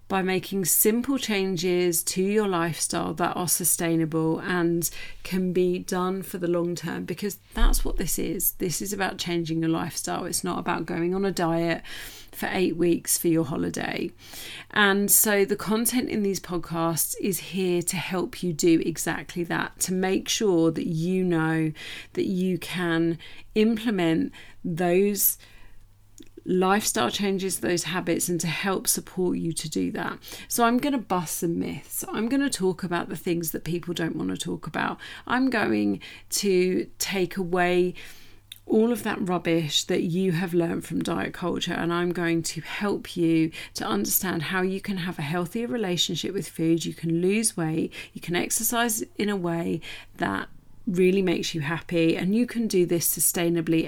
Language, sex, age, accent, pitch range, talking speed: English, female, 40-59, British, 165-195 Hz, 175 wpm